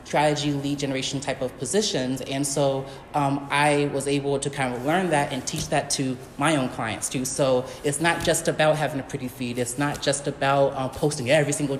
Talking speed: 215 wpm